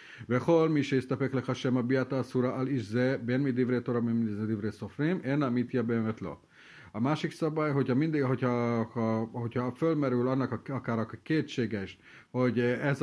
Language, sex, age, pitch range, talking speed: Hungarian, male, 30-49, 110-135 Hz, 145 wpm